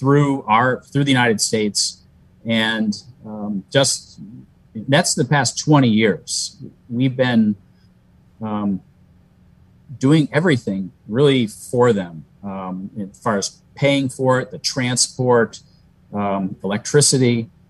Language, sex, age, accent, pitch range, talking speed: English, male, 40-59, American, 100-130 Hz, 110 wpm